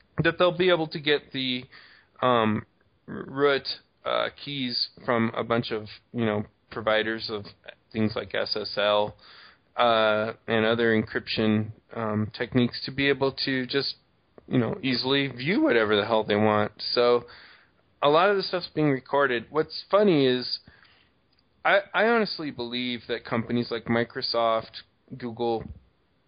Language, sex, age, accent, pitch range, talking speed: English, male, 20-39, American, 110-140 Hz, 140 wpm